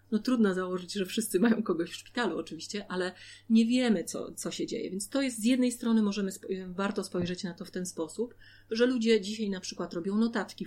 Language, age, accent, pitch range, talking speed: Polish, 30-49, native, 180-220 Hz, 220 wpm